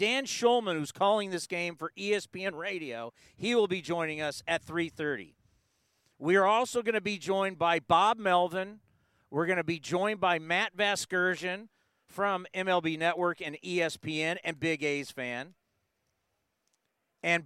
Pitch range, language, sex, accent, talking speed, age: 155-195 Hz, English, male, American, 150 wpm, 40-59